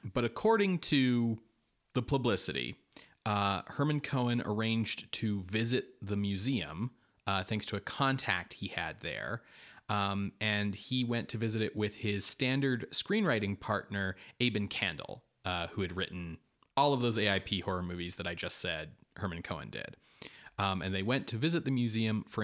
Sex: male